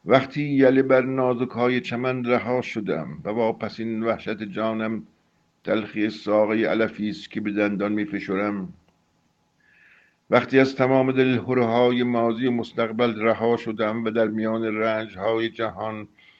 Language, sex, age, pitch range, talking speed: Persian, male, 50-69, 110-130 Hz, 135 wpm